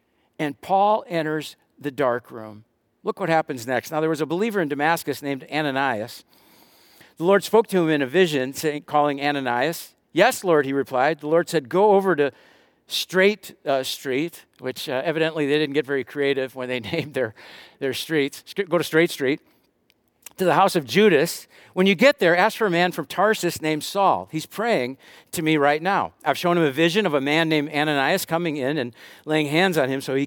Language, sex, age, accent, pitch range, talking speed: English, male, 50-69, American, 145-190 Hz, 205 wpm